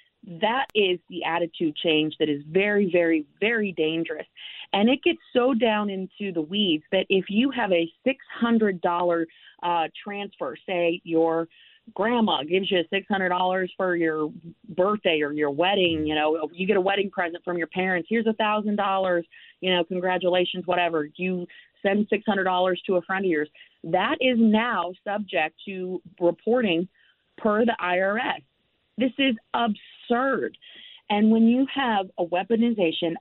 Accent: American